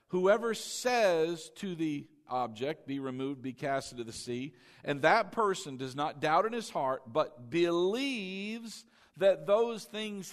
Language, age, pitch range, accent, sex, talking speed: English, 50-69, 140-200 Hz, American, male, 150 wpm